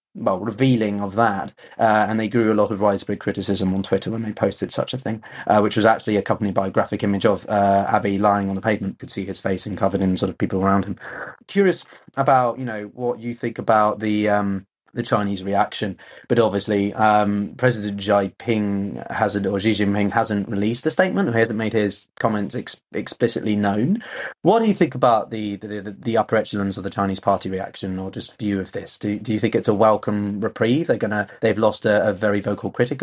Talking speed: 225 wpm